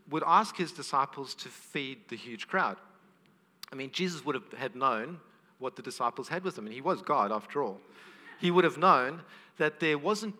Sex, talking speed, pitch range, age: male, 200 wpm, 135-190 Hz, 50-69